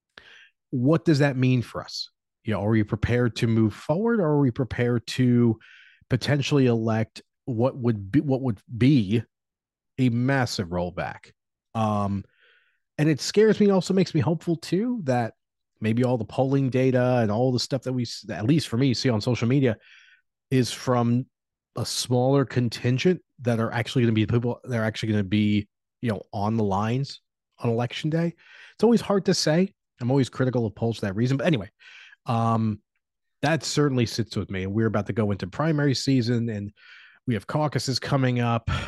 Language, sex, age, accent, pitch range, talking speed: English, male, 30-49, American, 110-140 Hz, 190 wpm